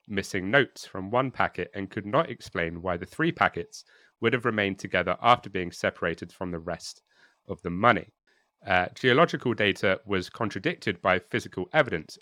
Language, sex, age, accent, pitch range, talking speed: English, male, 30-49, British, 90-120 Hz, 165 wpm